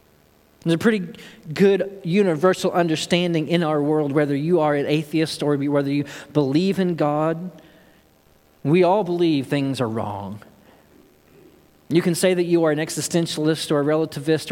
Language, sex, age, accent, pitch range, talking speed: English, male, 40-59, American, 115-185 Hz, 155 wpm